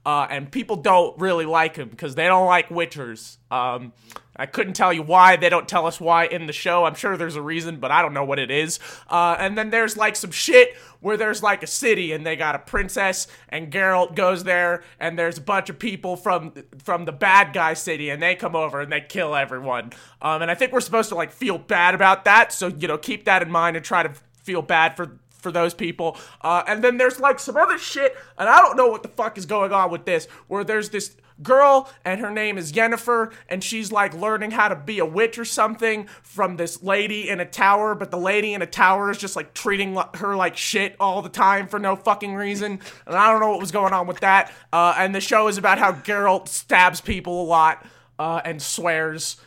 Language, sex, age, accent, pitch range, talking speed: English, male, 20-39, American, 165-205 Hz, 240 wpm